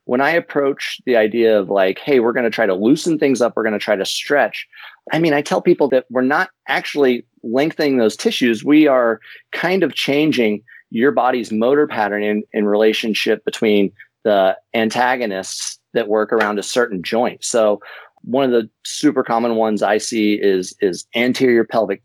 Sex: male